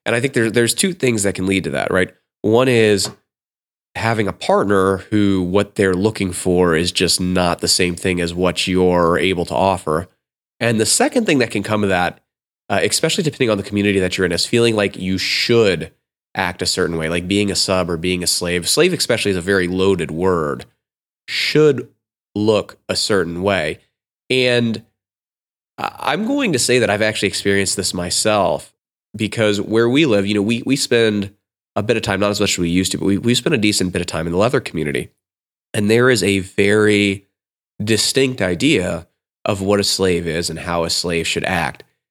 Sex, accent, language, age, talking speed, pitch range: male, American, English, 30-49, 205 wpm, 90-110 Hz